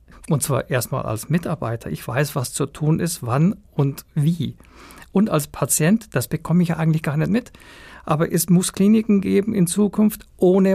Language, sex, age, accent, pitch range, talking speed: German, male, 50-69, German, 155-200 Hz, 185 wpm